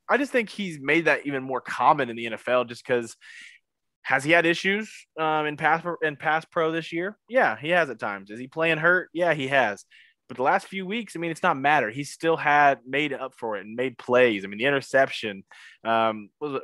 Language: English